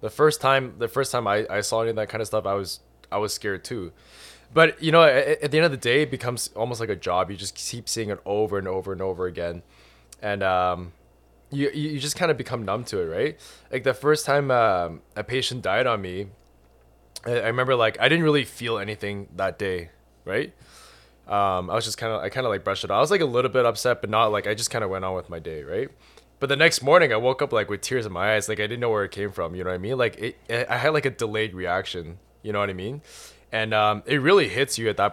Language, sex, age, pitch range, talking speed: English, male, 20-39, 95-120 Hz, 280 wpm